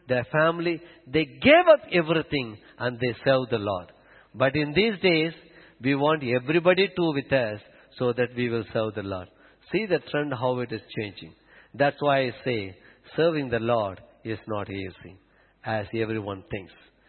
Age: 50-69